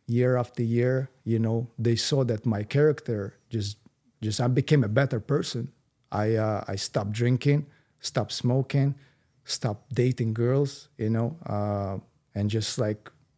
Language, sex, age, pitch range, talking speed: English, male, 40-59, 115-135 Hz, 150 wpm